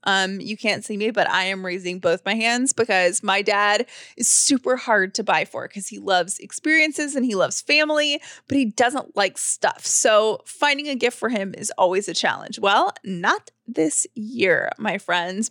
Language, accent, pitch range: English, American, 210-275 Hz